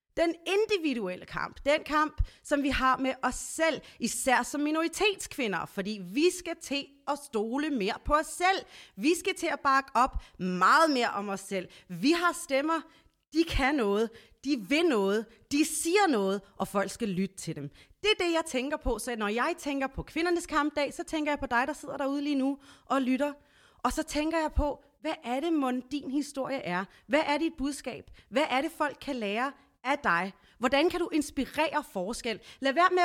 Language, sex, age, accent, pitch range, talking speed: Danish, female, 30-49, native, 245-335 Hz, 200 wpm